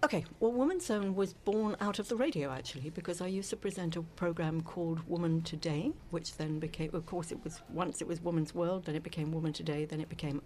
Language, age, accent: English, 60-79, British